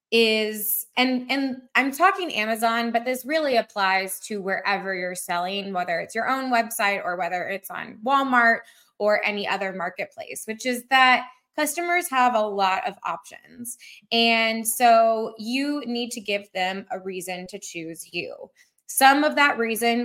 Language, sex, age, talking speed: English, female, 20-39, 160 wpm